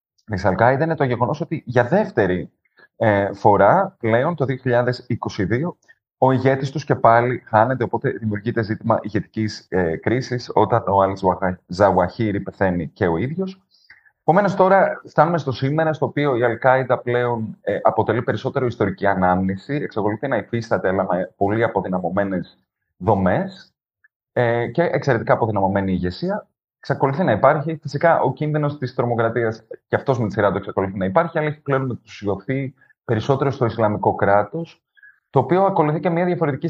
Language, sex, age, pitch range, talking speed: Greek, male, 30-49, 100-140 Hz, 140 wpm